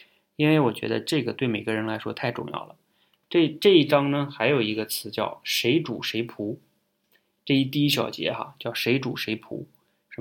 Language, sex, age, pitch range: Chinese, male, 20-39, 110-135 Hz